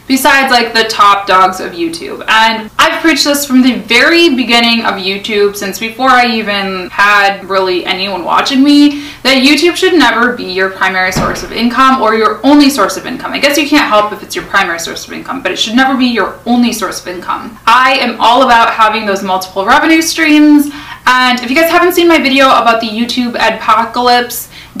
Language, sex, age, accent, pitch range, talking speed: English, female, 20-39, American, 215-280 Hz, 205 wpm